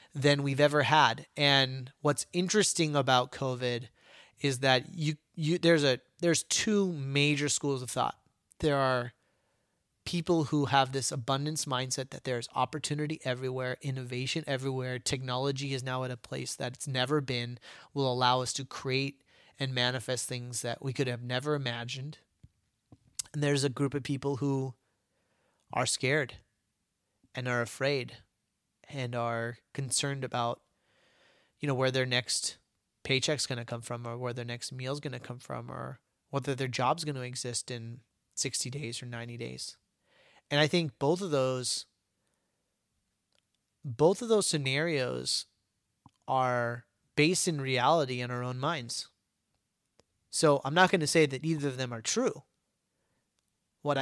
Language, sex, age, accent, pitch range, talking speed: English, male, 30-49, American, 125-145 Hz, 155 wpm